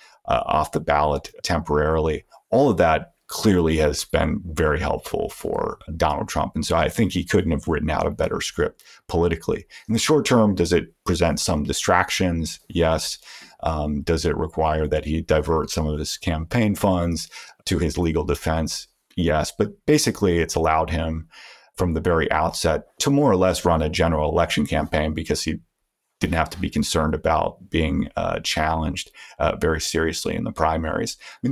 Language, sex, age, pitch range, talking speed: English, male, 40-59, 80-90 Hz, 175 wpm